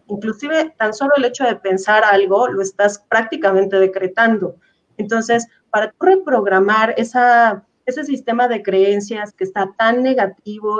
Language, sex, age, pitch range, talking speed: Spanish, female, 30-49, 195-250 Hz, 135 wpm